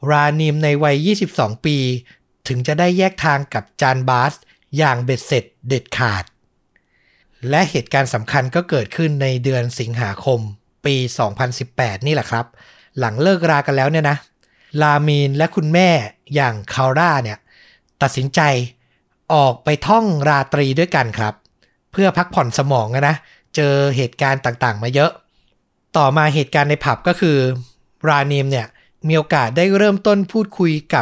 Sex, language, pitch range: male, Thai, 130-170 Hz